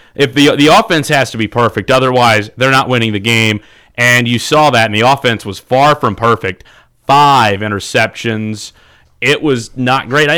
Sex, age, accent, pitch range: male, 30-49, American, 110-125 Hz